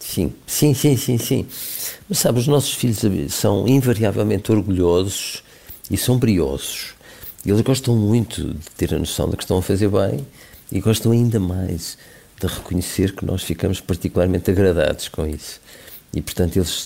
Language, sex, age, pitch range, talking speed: Portuguese, male, 50-69, 85-100 Hz, 160 wpm